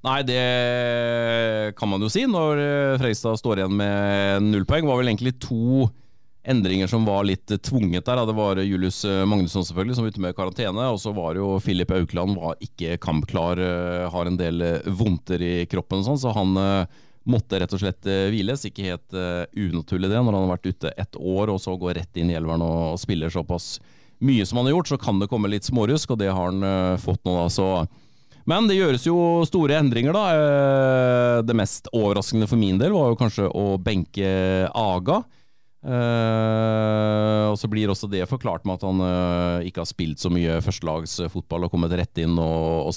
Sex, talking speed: male, 185 wpm